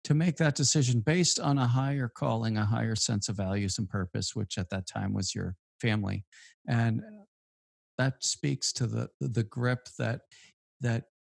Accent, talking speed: American, 170 wpm